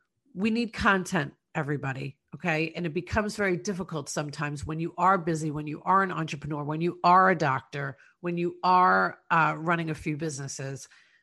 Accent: American